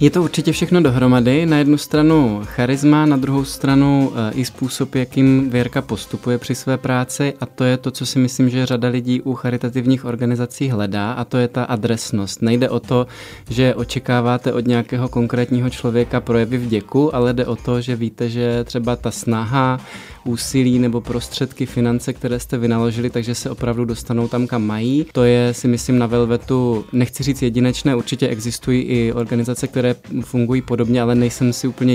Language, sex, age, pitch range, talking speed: Czech, male, 20-39, 120-130 Hz, 175 wpm